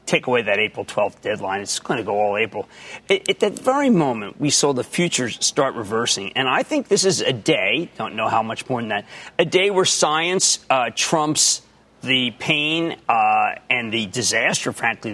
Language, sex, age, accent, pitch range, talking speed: English, male, 40-59, American, 135-195 Hz, 195 wpm